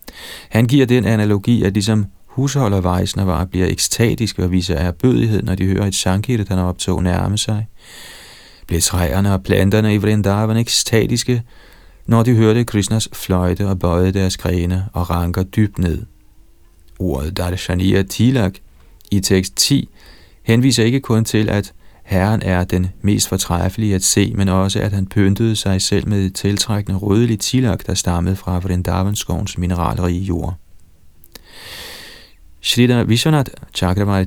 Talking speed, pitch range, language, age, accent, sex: 145 wpm, 90-110 Hz, Danish, 40-59, native, male